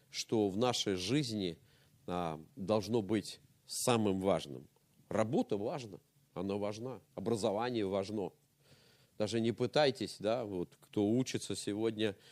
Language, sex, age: Russian, male, 40-59